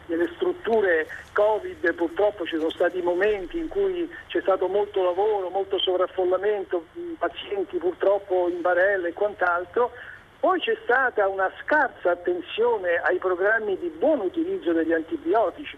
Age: 50-69